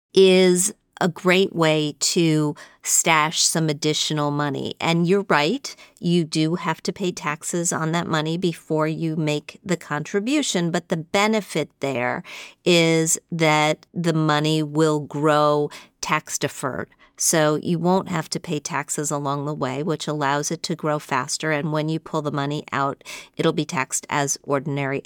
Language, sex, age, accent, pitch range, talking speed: English, female, 50-69, American, 145-175 Hz, 160 wpm